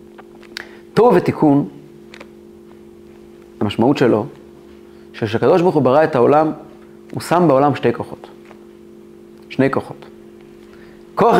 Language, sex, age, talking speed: Hebrew, male, 30-49, 95 wpm